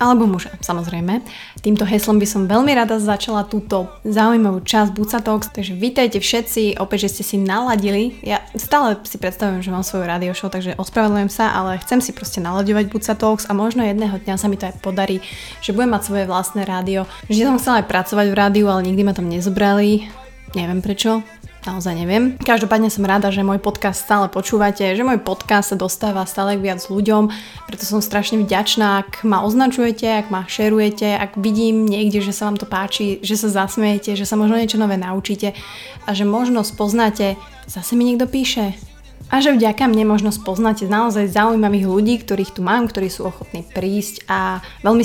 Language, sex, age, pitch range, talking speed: Slovak, female, 20-39, 195-220 Hz, 185 wpm